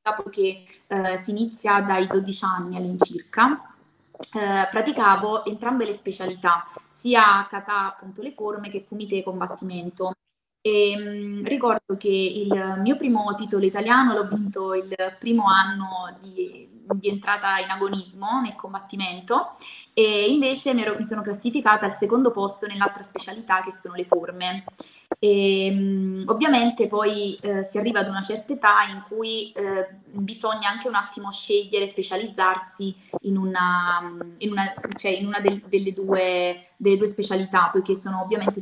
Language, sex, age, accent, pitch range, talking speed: Italian, female, 20-39, native, 190-215 Hz, 145 wpm